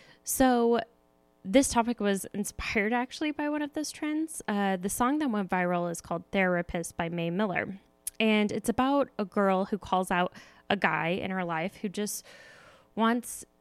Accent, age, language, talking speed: American, 10-29, English, 170 wpm